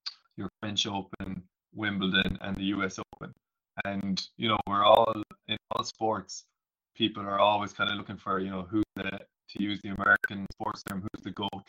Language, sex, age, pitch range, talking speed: English, male, 20-39, 95-105 Hz, 185 wpm